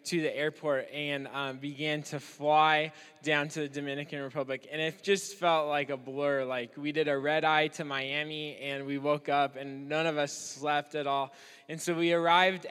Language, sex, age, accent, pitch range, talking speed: English, male, 10-29, American, 145-165 Hz, 205 wpm